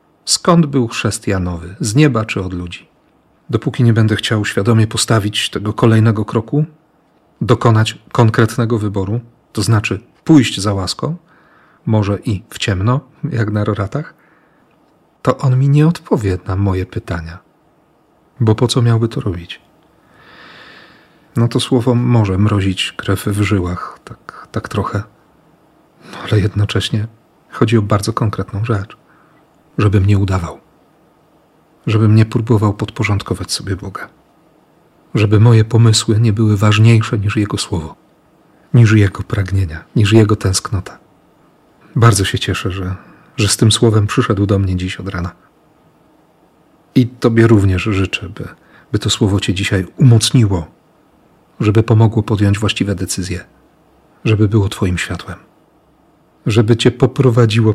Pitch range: 100-120 Hz